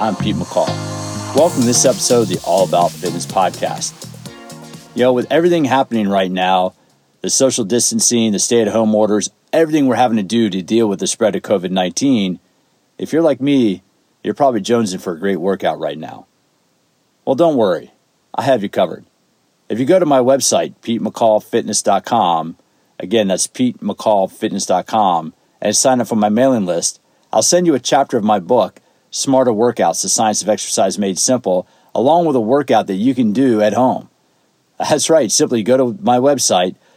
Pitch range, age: 105-135 Hz, 50-69